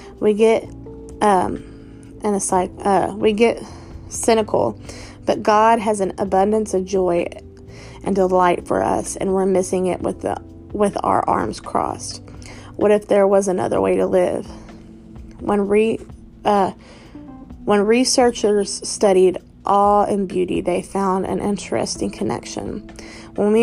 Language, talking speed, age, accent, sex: English, 135 wpm, 20-39, American, female